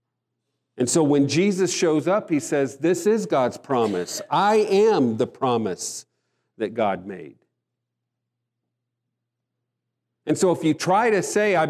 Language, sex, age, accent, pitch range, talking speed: English, male, 50-69, American, 120-160 Hz, 140 wpm